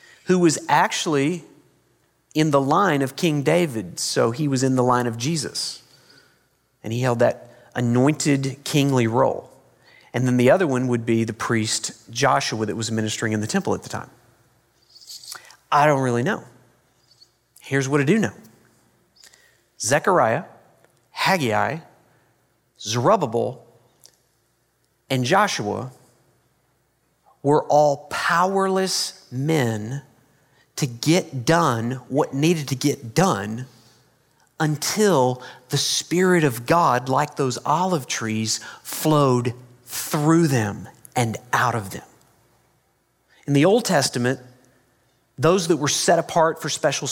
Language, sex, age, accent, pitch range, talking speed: English, male, 40-59, American, 125-155 Hz, 120 wpm